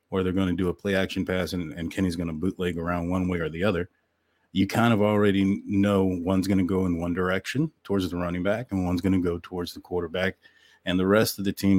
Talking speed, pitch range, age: 255 wpm, 90-100 Hz, 30-49